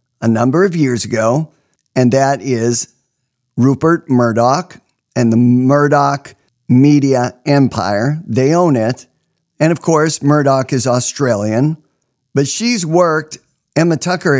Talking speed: 120 wpm